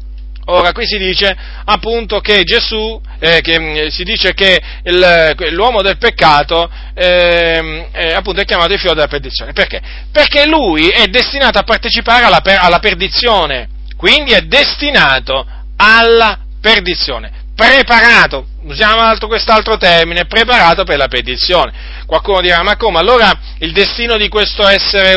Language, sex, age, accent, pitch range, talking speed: Italian, male, 40-59, native, 165-220 Hz, 140 wpm